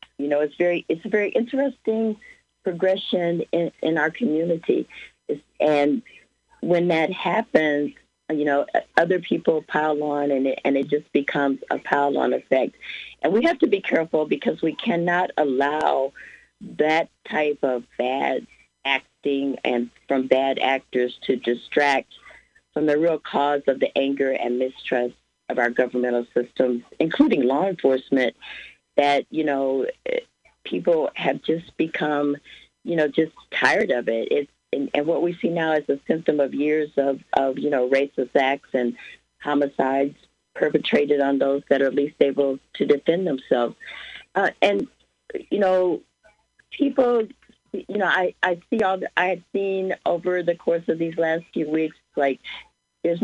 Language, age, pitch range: English, 50-69, 140-170 Hz